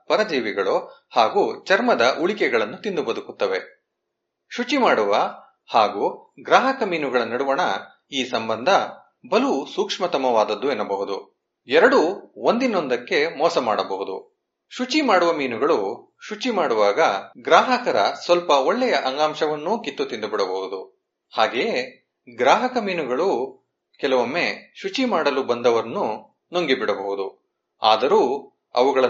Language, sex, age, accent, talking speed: Kannada, male, 30-49, native, 85 wpm